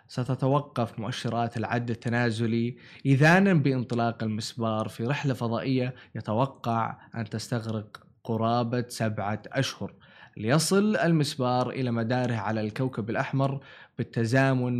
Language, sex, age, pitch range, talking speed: Arabic, male, 20-39, 120-155 Hz, 95 wpm